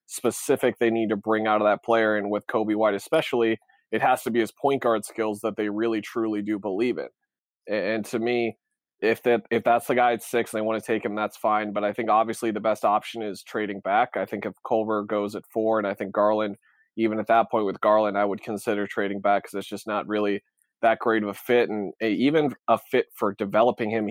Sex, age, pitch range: male, 20-39, 105-115 Hz